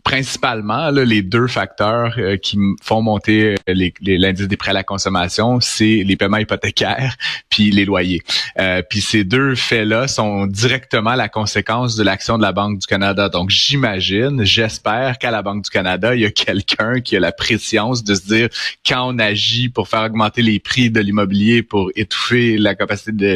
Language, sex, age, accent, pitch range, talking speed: French, male, 30-49, Canadian, 95-115 Hz, 195 wpm